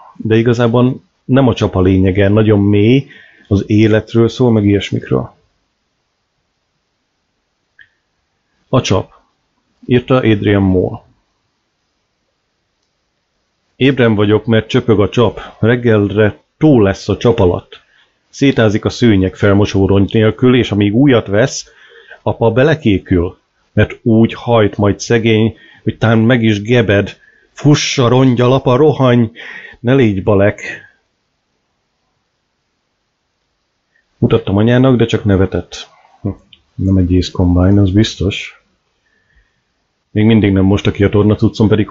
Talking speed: 115 wpm